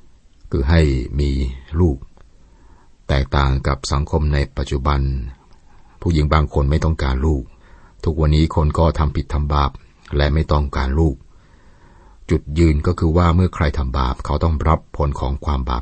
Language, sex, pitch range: Thai, male, 70-80 Hz